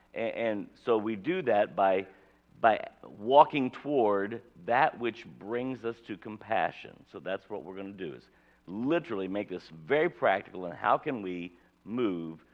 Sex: male